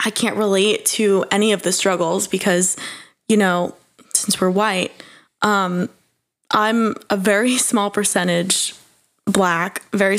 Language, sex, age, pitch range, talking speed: English, female, 20-39, 190-225 Hz, 130 wpm